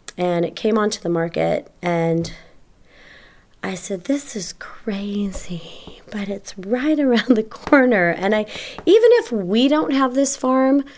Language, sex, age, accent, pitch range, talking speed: English, female, 30-49, American, 170-215 Hz, 150 wpm